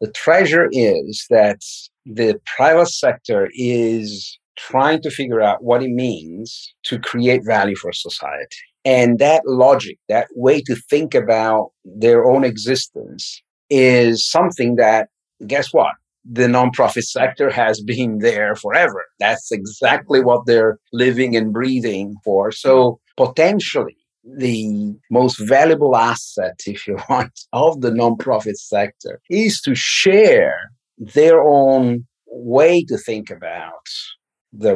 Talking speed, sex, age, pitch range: 130 wpm, male, 50-69, 110-160 Hz